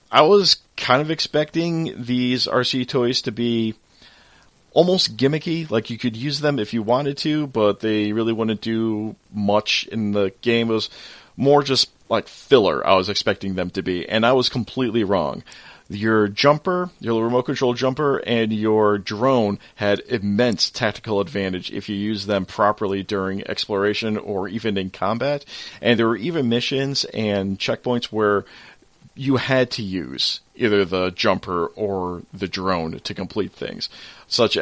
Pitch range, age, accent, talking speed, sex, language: 100-125 Hz, 40-59, American, 160 wpm, male, English